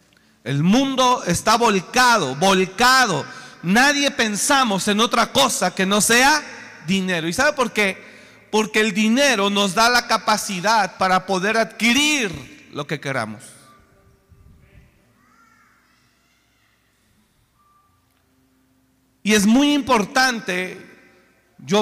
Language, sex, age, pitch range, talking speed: Spanish, male, 40-59, 160-245 Hz, 100 wpm